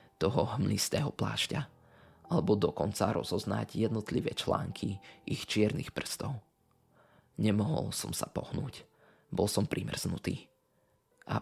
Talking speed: 100 wpm